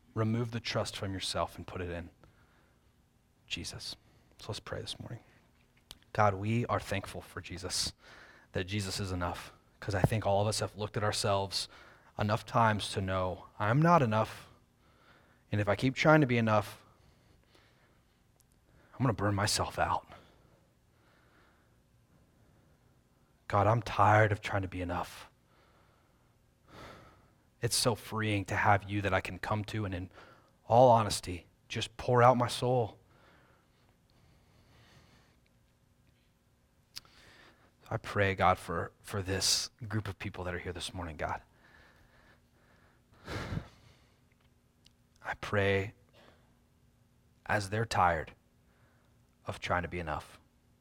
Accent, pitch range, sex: American, 95-115 Hz, male